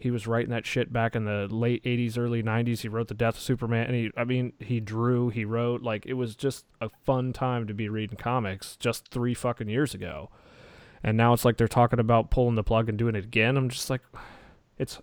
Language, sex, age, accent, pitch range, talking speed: English, male, 30-49, American, 105-120 Hz, 240 wpm